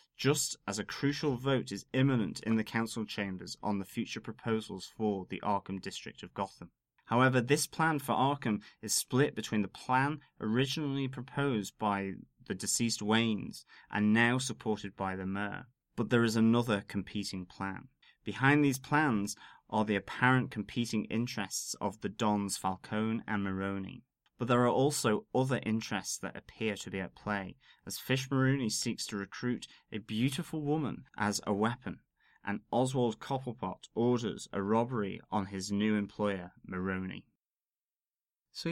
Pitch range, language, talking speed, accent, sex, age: 100-125 Hz, English, 155 wpm, British, male, 30-49